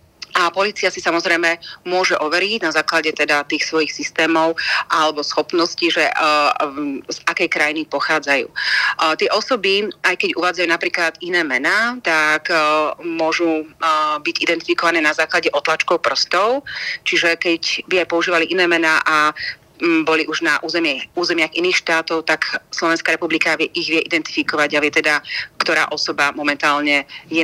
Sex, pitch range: female, 155-175 Hz